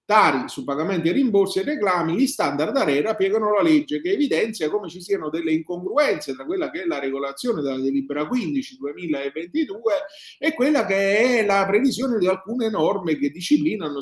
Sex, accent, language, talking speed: male, native, Italian, 175 wpm